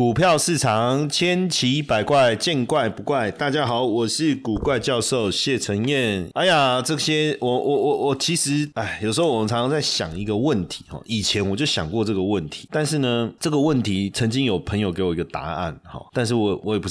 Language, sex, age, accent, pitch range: Chinese, male, 30-49, native, 95-120 Hz